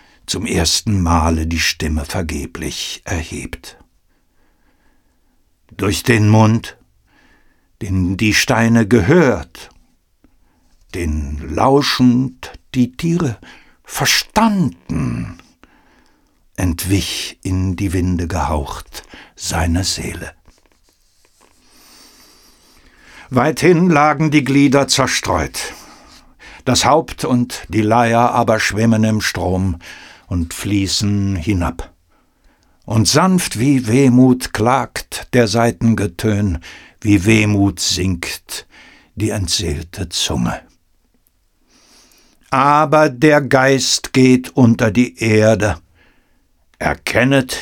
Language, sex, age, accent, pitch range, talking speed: German, male, 60-79, German, 85-130 Hz, 80 wpm